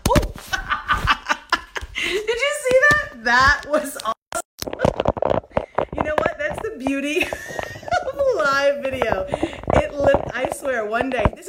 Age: 30-49